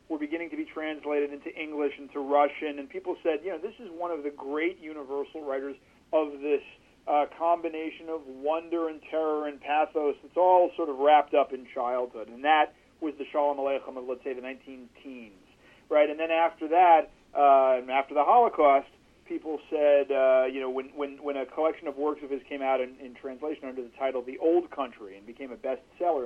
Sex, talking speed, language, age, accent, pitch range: male, 210 wpm, English, 40-59, American, 135-160 Hz